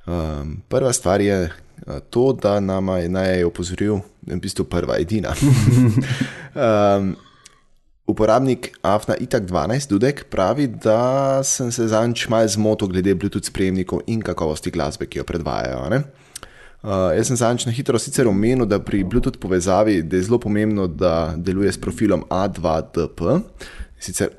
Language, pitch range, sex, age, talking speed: English, 90-115 Hz, male, 20-39, 150 wpm